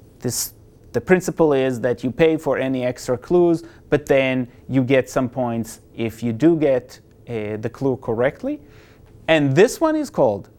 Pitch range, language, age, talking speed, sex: 130-190 Hz, English, 30-49, 165 wpm, male